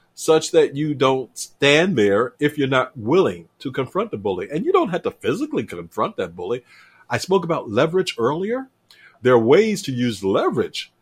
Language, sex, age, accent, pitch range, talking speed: English, male, 50-69, American, 115-165 Hz, 185 wpm